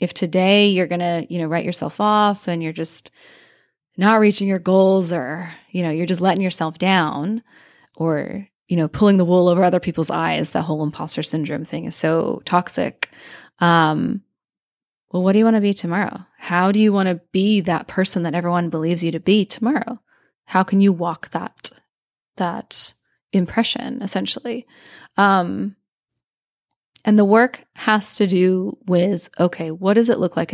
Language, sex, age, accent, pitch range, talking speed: English, female, 20-39, American, 175-210 Hz, 175 wpm